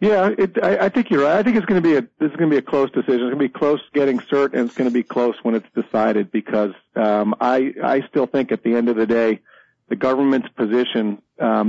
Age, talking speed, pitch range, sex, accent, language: 40-59, 255 wpm, 110-130 Hz, male, American, English